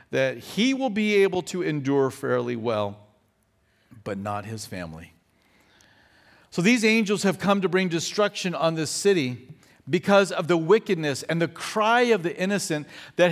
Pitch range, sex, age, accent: 150-200 Hz, male, 50-69, American